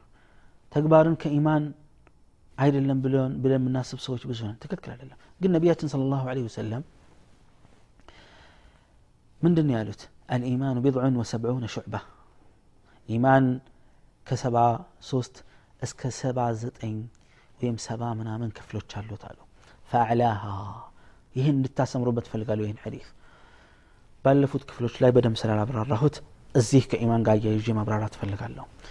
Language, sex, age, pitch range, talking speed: Amharic, male, 30-49, 110-145 Hz, 105 wpm